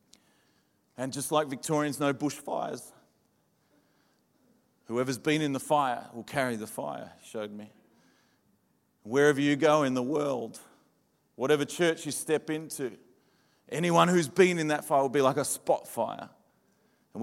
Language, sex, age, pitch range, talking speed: English, male, 30-49, 130-155 Hz, 145 wpm